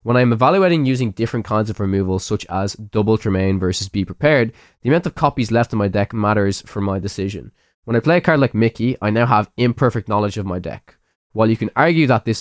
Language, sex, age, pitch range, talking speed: English, male, 20-39, 100-120 Hz, 230 wpm